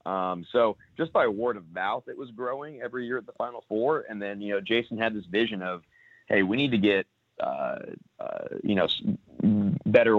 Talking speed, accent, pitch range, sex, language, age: 210 wpm, American, 95-105 Hz, male, English, 30-49